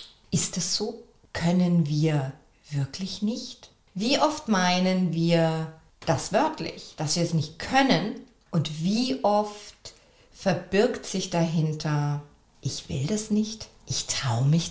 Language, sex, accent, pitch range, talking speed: German, female, German, 160-200 Hz, 125 wpm